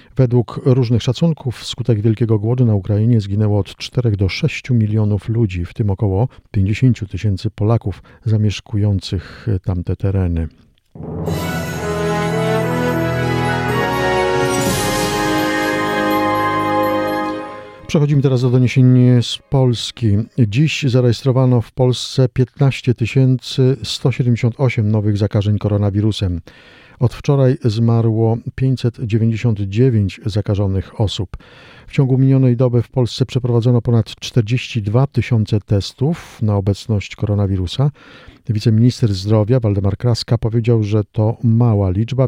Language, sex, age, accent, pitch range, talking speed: Polish, male, 50-69, native, 105-125 Hz, 95 wpm